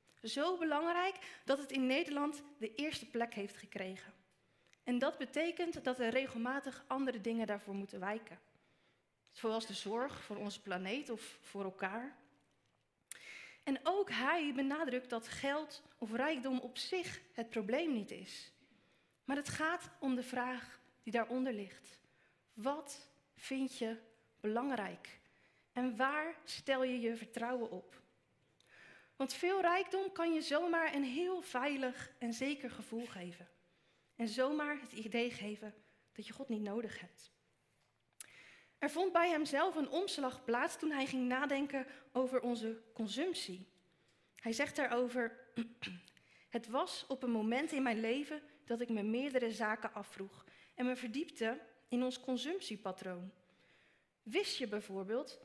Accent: Dutch